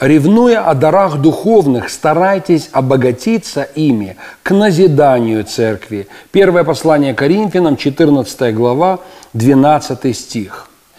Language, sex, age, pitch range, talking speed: Russian, male, 40-59, 135-185 Hz, 95 wpm